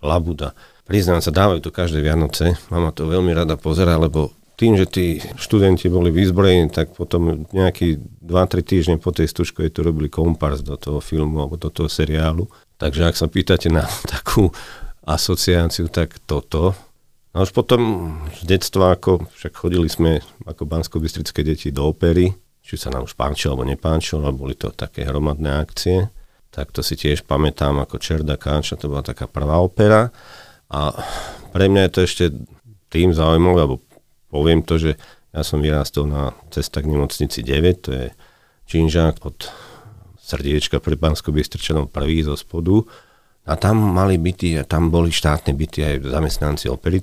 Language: Slovak